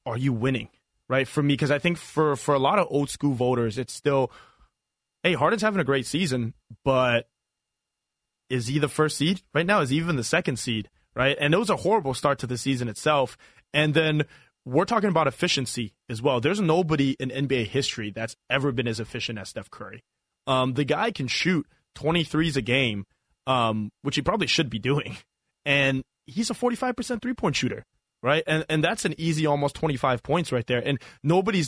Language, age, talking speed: English, 20-39, 195 wpm